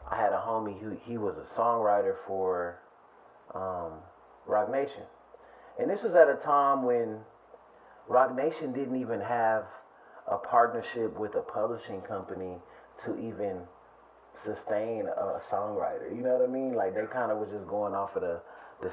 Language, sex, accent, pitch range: English, male, American, 105-160 Hz